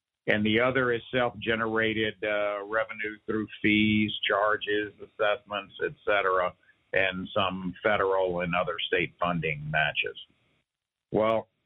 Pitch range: 95-115 Hz